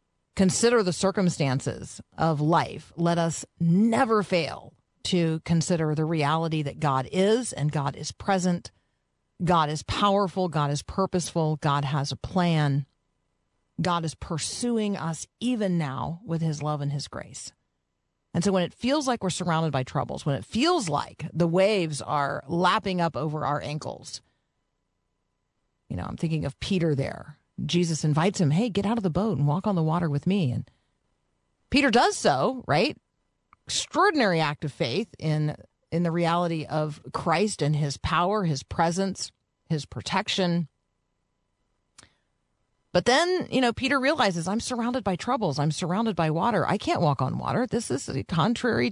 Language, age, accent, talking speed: English, 40-59, American, 160 wpm